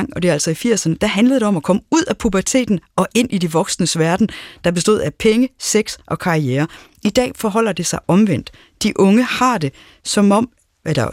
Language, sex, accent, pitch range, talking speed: Danish, female, native, 155-205 Hz, 220 wpm